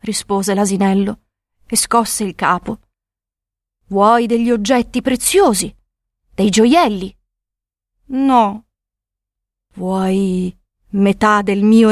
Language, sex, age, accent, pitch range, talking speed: Italian, female, 40-59, native, 185-270 Hz, 85 wpm